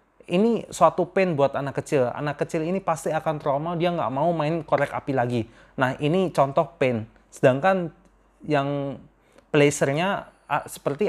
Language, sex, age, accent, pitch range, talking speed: Indonesian, male, 30-49, native, 130-165 Hz, 145 wpm